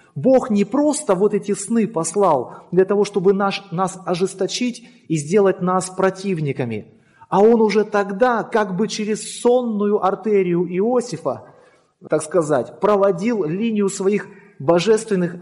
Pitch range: 180-215 Hz